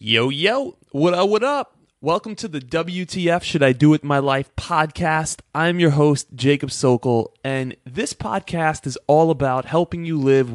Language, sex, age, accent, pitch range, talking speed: English, male, 20-39, American, 130-160 Hz, 175 wpm